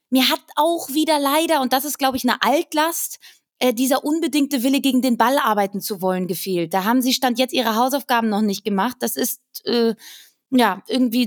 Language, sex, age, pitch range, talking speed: German, female, 20-39, 225-265 Hz, 200 wpm